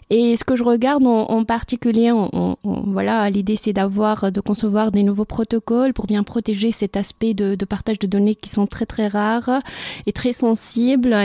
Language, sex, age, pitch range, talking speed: French, female, 30-49, 190-225 Hz, 195 wpm